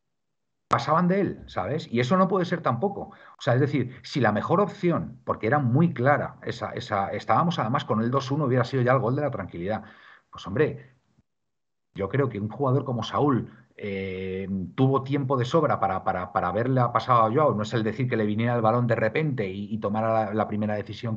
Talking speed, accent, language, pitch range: 215 wpm, Spanish, Spanish, 110-145 Hz